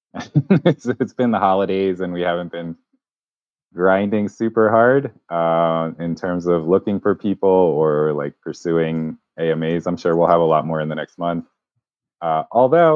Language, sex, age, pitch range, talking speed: English, male, 20-39, 80-100 Hz, 165 wpm